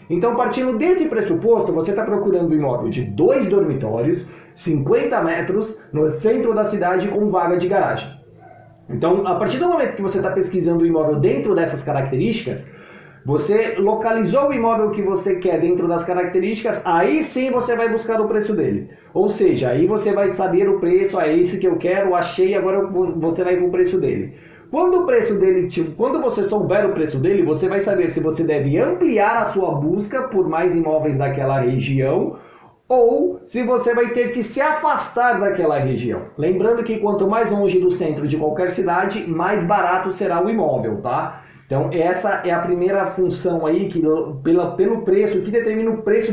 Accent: Brazilian